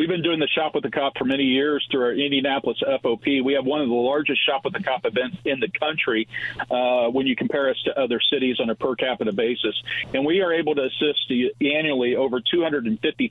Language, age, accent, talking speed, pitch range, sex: English, 50-69, American, 230 wpm, 125-150 Hz, male